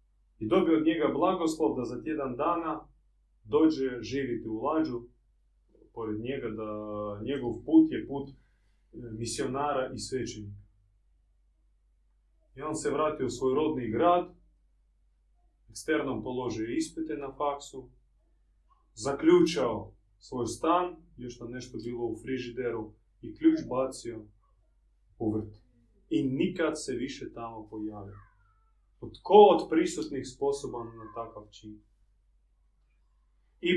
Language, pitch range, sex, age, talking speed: Croatian, 105-170 Hz, male, 30-49, 115 wpm